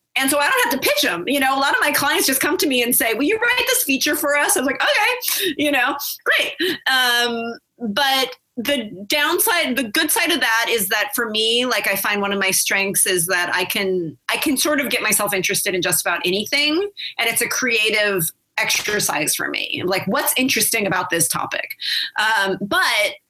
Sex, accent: female, American